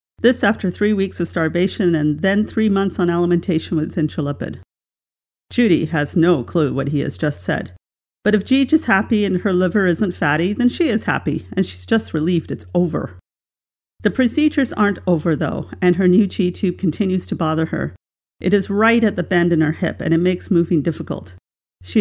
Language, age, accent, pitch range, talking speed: English, 50-69, American, 155-195 Hz, 195 wpm